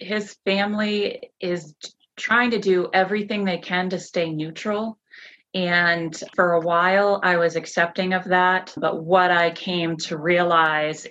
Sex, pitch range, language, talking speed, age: female, 155-190 Hz, English, 145 wpm, 30-49